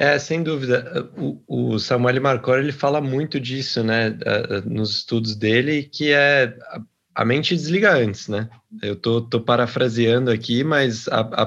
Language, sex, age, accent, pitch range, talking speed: Portuguese, male, 20-39, Brazilian, 115-140 Hz, 155 wpm